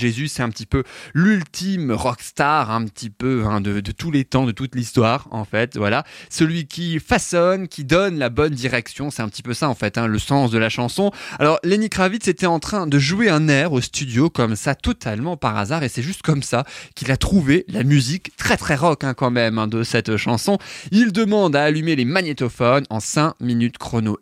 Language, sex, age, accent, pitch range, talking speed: French, male, 20-39, French, 125-180 Hz, 225 wpm